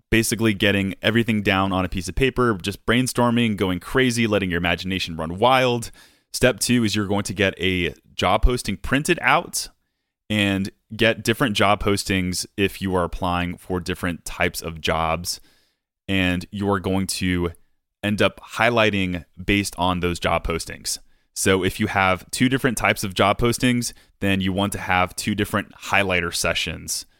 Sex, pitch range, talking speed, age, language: male, 90-110 Hz, 165 wpm, 20-39, English